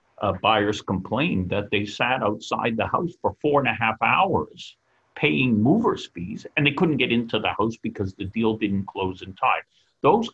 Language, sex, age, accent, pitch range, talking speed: English, male, 50-69, American, 105-135 Hz, 190 wpm